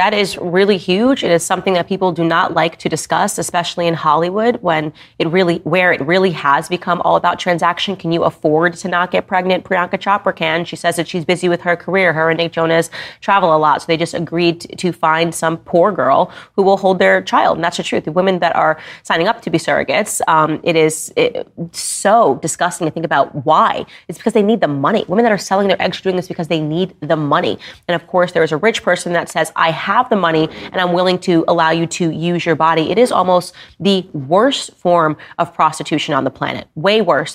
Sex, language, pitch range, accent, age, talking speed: female, English, 160-180 Hz, American, 30-49, 235 wpm